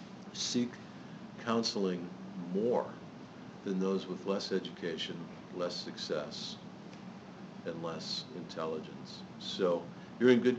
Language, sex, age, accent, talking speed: English, male, 50-69, American, 95 wpm